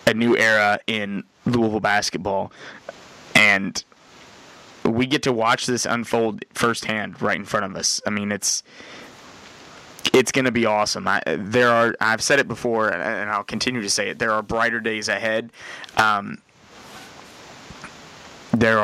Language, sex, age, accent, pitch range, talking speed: English, male, 20-39, American, 110-125 Hz, 145 wpm